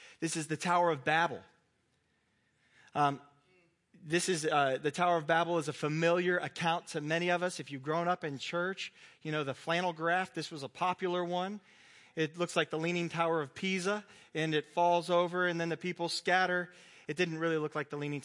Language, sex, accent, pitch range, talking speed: English, male, American, 140-175 Hz, 205 wpm